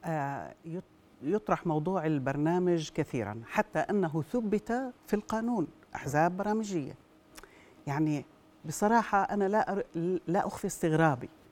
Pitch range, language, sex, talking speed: 170-230 Hz, Arabic, female, 90 wpm